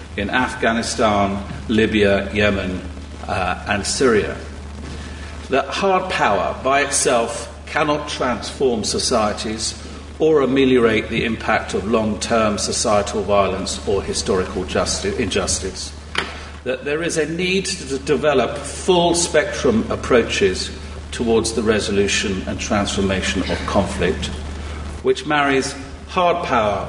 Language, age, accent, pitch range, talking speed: English, 50-69, British, 75-115 Hz, 105 wpm